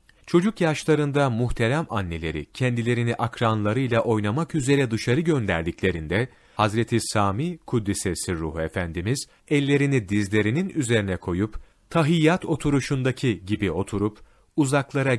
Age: 40-59